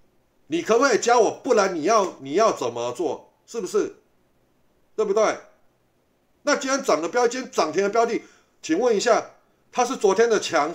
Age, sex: 30-49, male